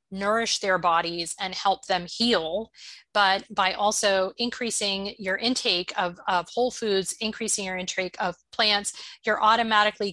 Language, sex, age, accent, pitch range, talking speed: English, female, 30-49, American, 180-210 Hz, 140 wpm